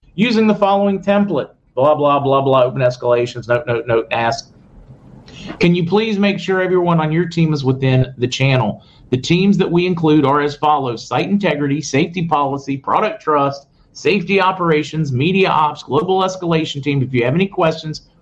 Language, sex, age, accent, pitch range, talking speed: English, male, 50-69, American, 125-170 Hz, 175 wpm